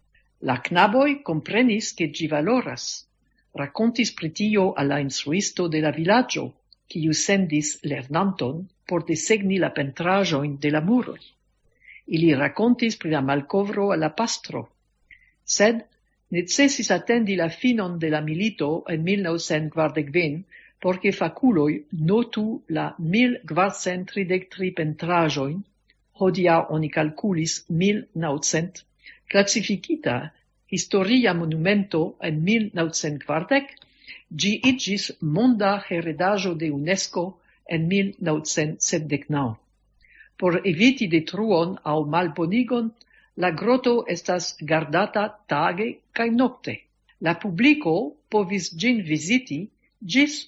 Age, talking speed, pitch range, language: 60-79, 100 wpm, 160-215 Hz, English